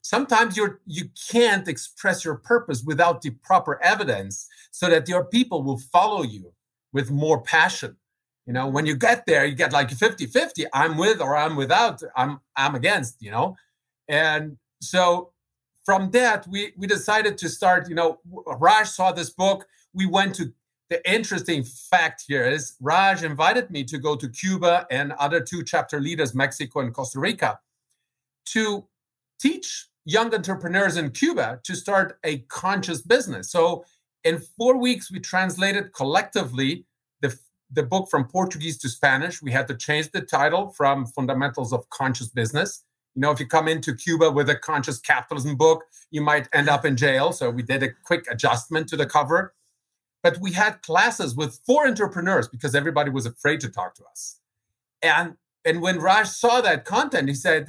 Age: 50-69